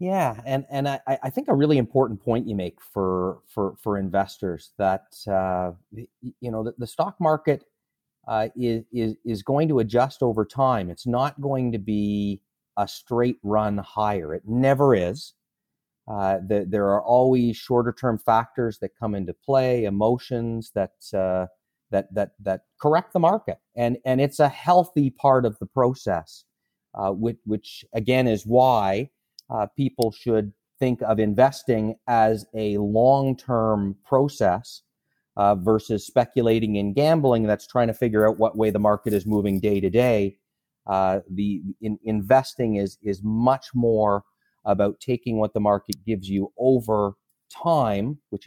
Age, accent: 40-59, American